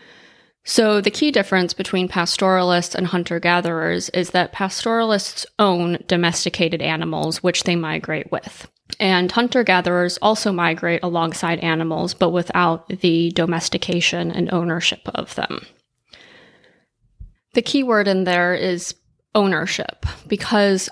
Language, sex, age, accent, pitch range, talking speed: English, female, 20-39, American, 170-195 Hz, 115 wpm